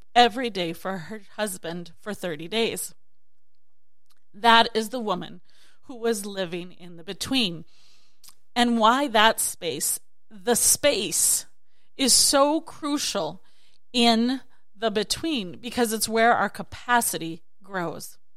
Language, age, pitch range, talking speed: English, 30-49, 200-270 Hz, 120 wpm